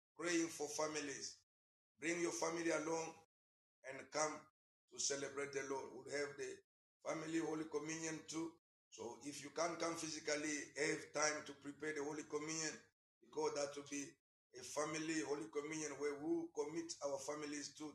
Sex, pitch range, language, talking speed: male, 135-155 Hz, English, 165 wpm